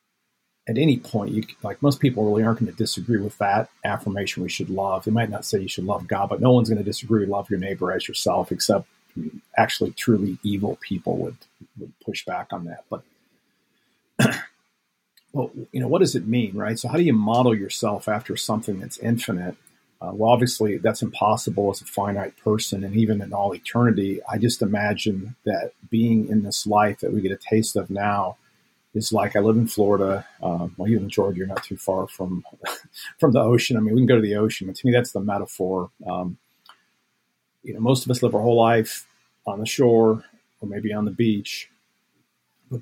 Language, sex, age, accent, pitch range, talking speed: English, male, 40-59, American, 100-115 Hz, 205 wpm